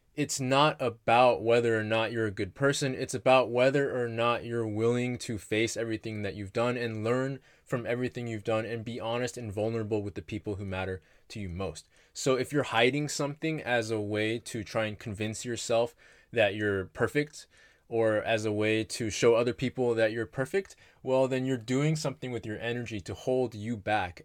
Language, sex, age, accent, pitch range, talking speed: English, male, 20-39, American, 105-130 Hz, 200 wpm